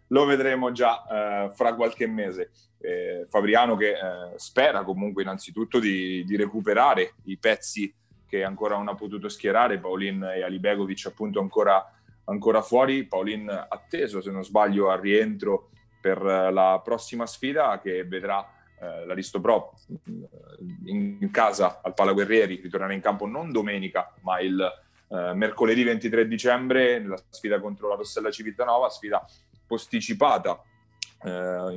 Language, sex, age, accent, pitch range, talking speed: Italian, male, 30-49, native, 95-120 Hz, 140 wpm